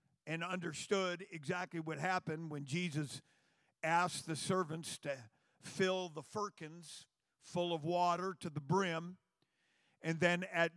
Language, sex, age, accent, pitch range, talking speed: English, male, 50-69, American, 165-215 Hz, 130 wpm